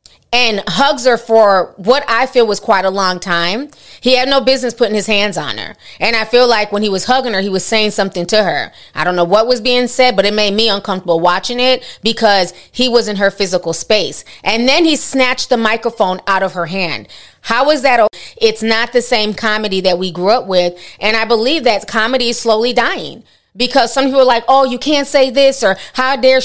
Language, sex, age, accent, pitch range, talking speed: English, female, 30-49, American, 195-250 Hz, 230 wpm